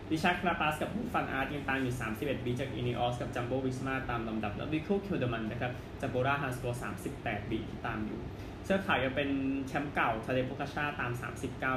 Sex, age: male, 20-39